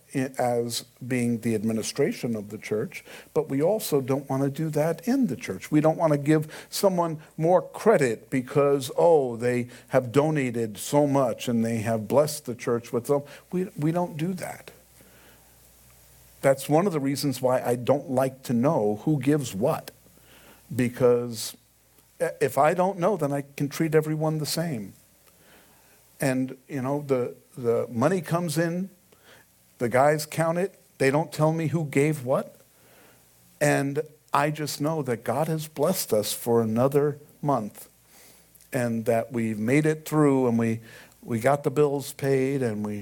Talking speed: 165 wpm